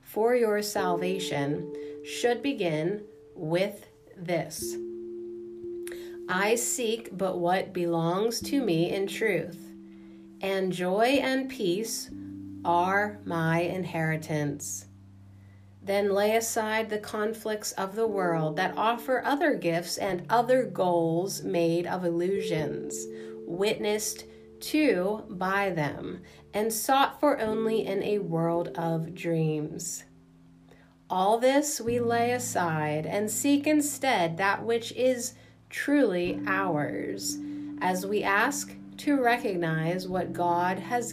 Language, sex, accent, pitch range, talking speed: English, female, American, 155-225 Hz, 110 wpm